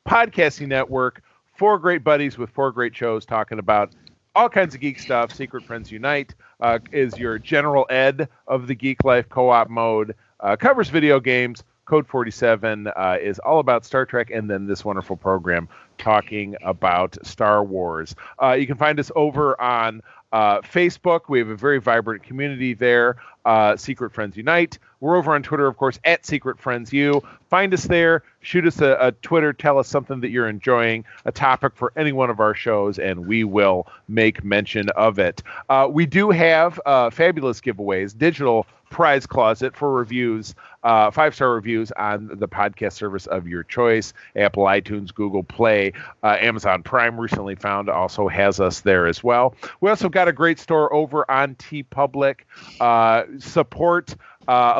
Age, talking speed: 40-59, 175 wpm